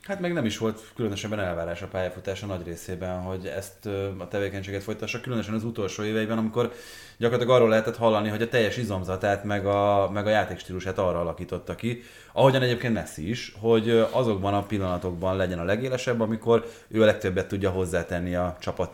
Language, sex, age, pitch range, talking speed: Hungarian, male, 20-39, 90-110 Hz, 175 wpm